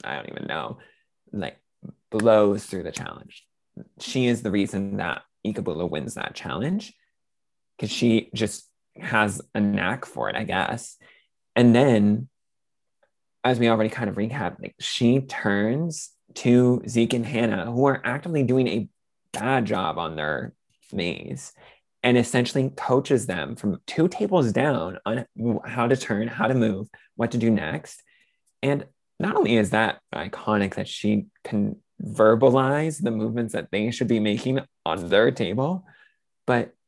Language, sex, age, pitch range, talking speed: English, male, 20-39, 105-130 Hz, 150 wpm